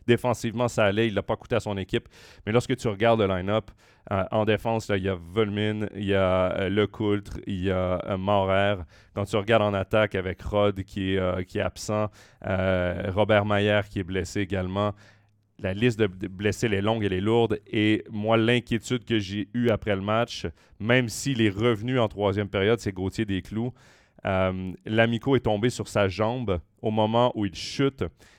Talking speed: 205 wpm